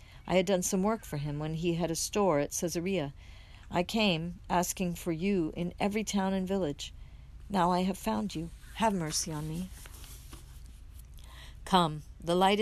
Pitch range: 130-180 Hz